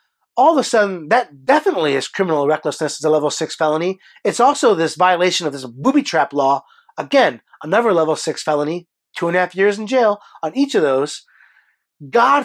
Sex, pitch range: male, 155-230 Hz